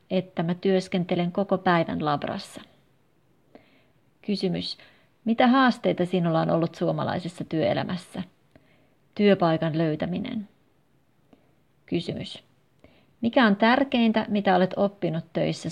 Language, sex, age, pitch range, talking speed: Finnish, female, 30-49, 165-205 Hz, 90 wpm